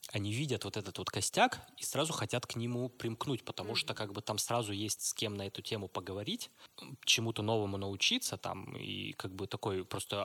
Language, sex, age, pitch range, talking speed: Russian, male, 20-39, 100-125 Hz, 200 wpm